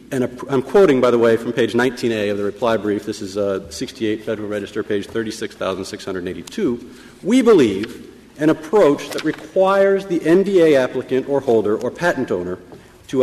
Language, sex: English, male